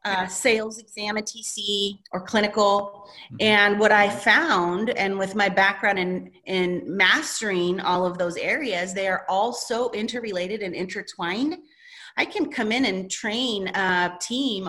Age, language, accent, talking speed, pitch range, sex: 30-49, English, American, 150 wpm, 180-220 Hz, female